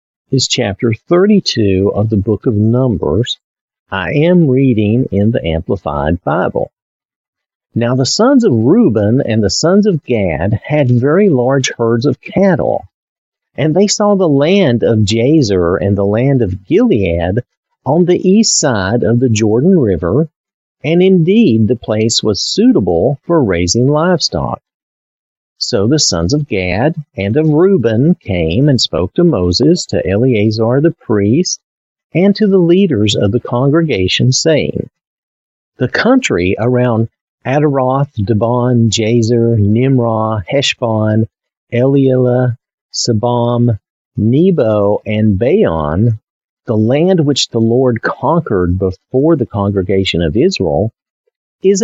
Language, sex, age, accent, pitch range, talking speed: English, male, 50-69, American, 110-155 Hz, 125 wpm